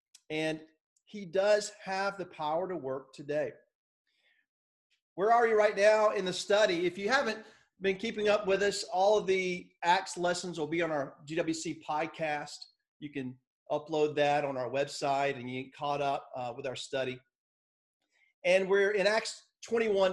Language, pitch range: English, 150-200 Hz